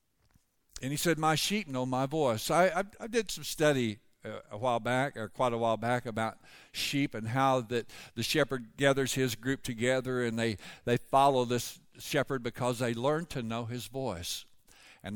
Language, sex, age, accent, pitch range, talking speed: English, male, 60-79, American, 125-155 Hz, 185 wpm